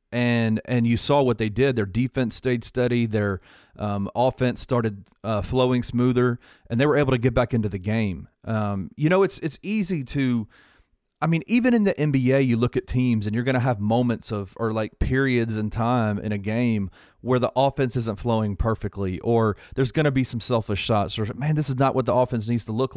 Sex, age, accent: male, 30-49, American